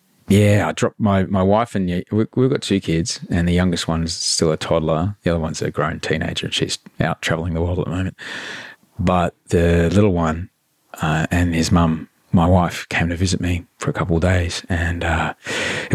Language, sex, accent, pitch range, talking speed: English, male, Australian, 85-105 Hz, 205 wpm